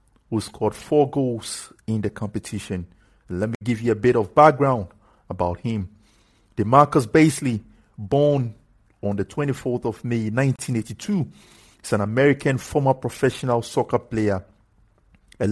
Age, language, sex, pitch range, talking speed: 50-69, English, male, 105-135 Hz, 130 wpm